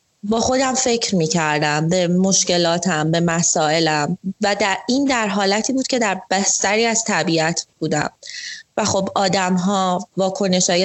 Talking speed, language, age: 155 wpm, Persian, 30-49